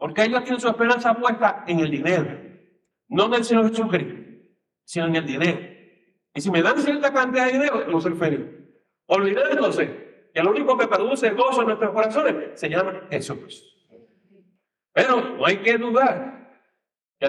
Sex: male